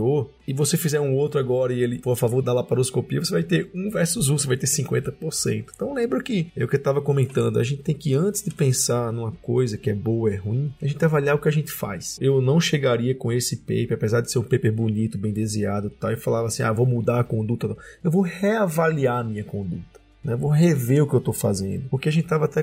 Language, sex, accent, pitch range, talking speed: Portuguese, male, Brazilian, 120-155 Hz, 250 wpm